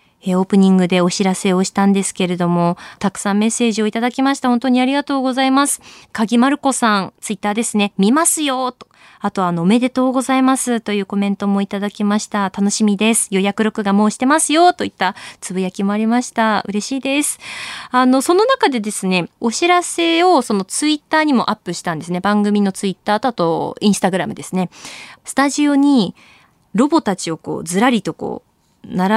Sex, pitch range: female, 185-260 Hz